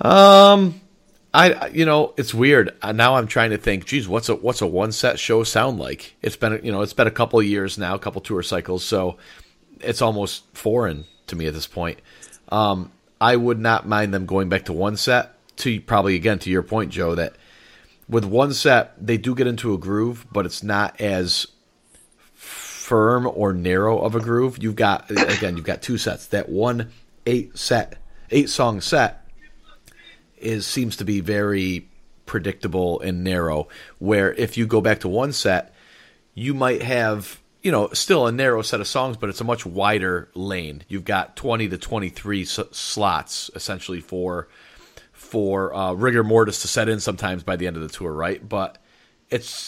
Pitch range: 95-115 Hz